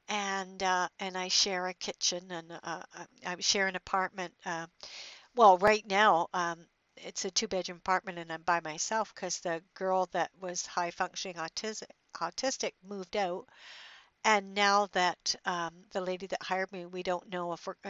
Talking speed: 170 wpm